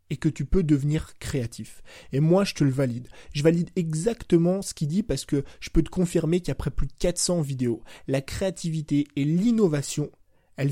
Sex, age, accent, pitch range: male, 20-39, French, 140-175 Hz